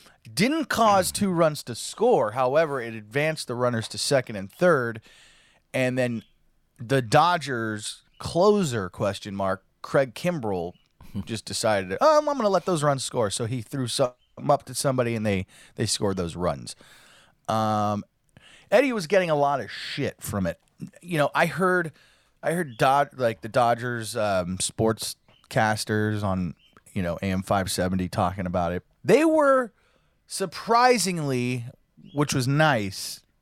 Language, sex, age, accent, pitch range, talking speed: English, male, 20-39, American, 105-170 Hz, 150 wpm